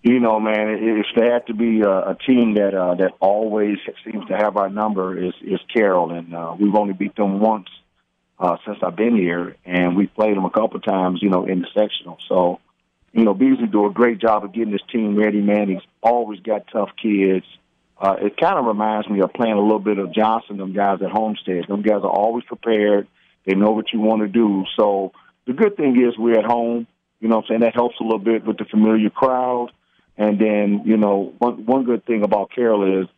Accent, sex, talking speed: American, male, 230 wpm